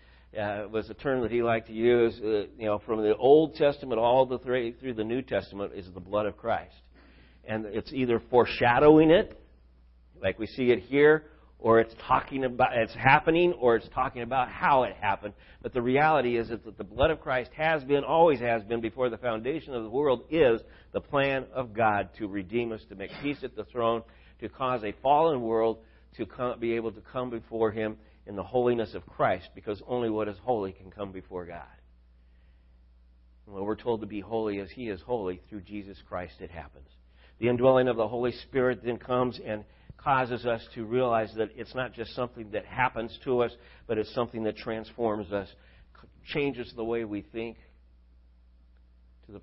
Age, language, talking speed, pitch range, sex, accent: 50-69, English, 195 wpm, 95-120 Hz, male, American